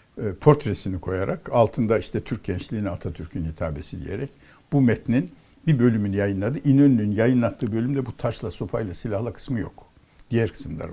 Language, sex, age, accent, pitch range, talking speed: Turkish, male, 60-79, native, 100-140 Hz, 135 wpm